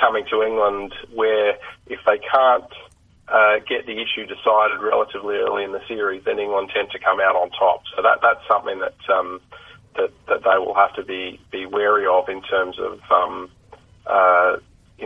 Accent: Australian